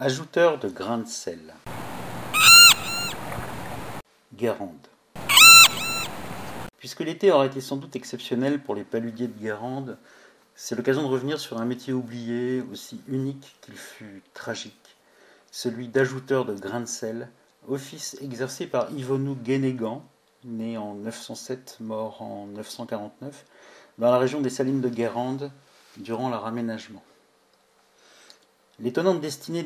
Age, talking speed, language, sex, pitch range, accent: 50-69, 120 wpm, French, male, 115-135 Hz, French